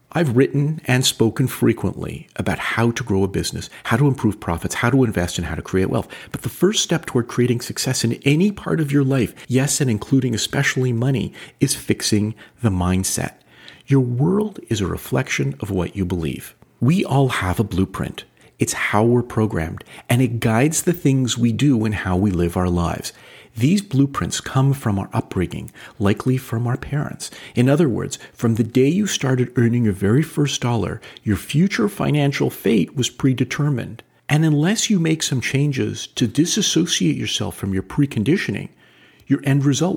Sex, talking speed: male, 180 wpm